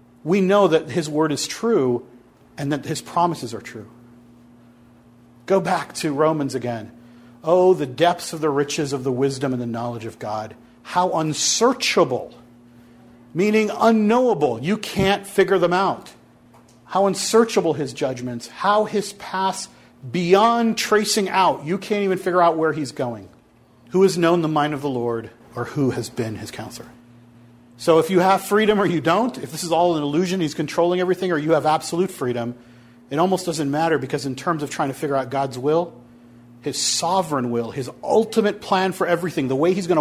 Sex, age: male, 40-59